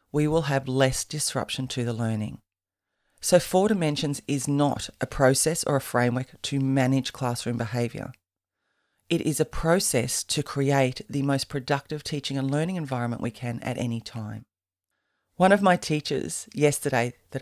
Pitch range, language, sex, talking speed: 120-155 Hz, English, female, 160 wpm